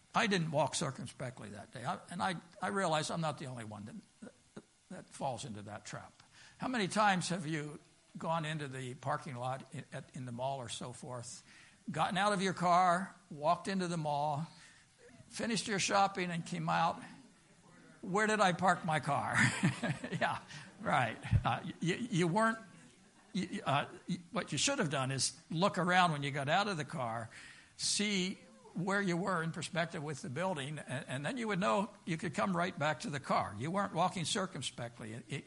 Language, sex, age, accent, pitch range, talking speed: English, male, 60-79, American, 135-185 Hz, 185 wpm